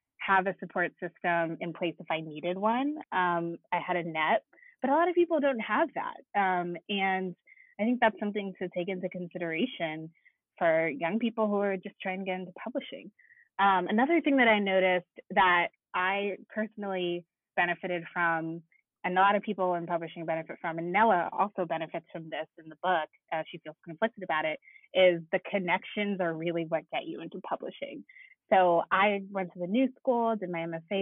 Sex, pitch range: female, 175-225 Hz